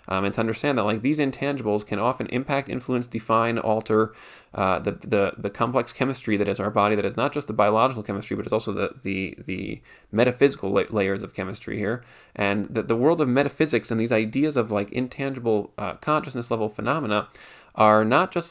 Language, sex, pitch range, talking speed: English, male, 105-130 Hz, 200 wpm